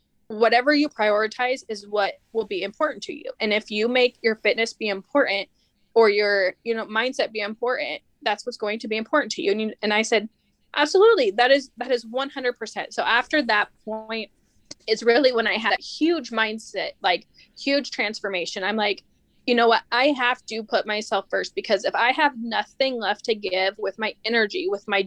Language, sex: English, female